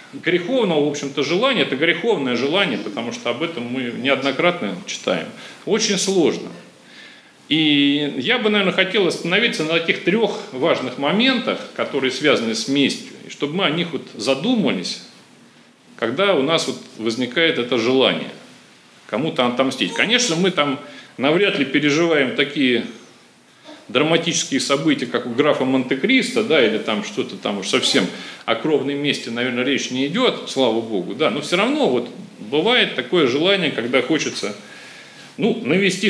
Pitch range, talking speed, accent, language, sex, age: 130-190 Hz, 145 wpm, native, Russian, male, 40-59